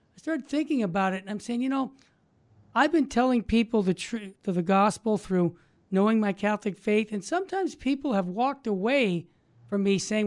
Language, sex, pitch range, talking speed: English, male, 210-275 Hz, 195 wpm